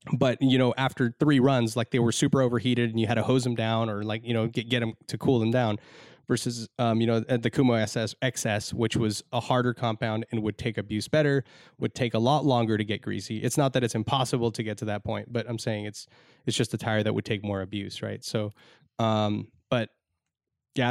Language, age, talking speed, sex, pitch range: English, 20-39, 240 wpm, male, 110-130 Hz